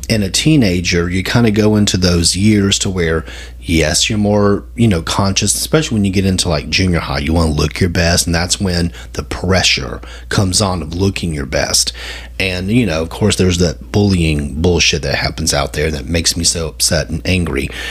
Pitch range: 80-100 Hz